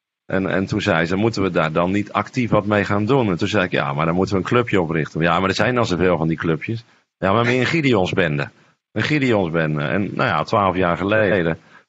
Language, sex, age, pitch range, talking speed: Dutch, male, 40-59, 100-135 Hz, 245 wpm